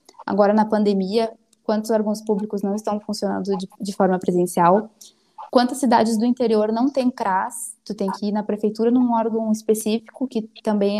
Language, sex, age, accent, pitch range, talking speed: Portuguese, female, 10-29, Brazilian, 200-250 Hz, 170 wpm